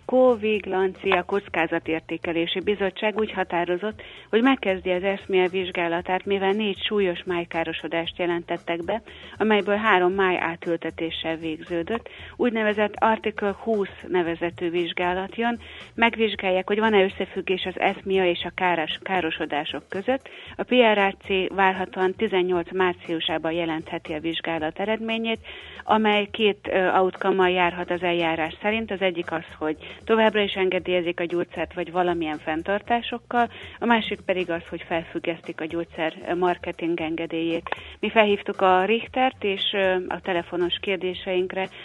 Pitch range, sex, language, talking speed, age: 170-205 Hz, female, Hungarian, 120 wpm, 30-49